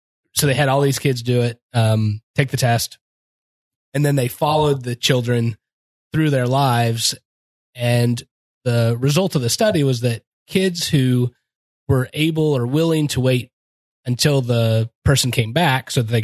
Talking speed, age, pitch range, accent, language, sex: 165 wpm, 20-39, 115-140 Hz, American, English, male